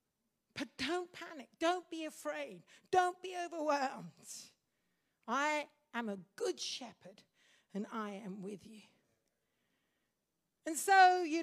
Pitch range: 230-325 Hz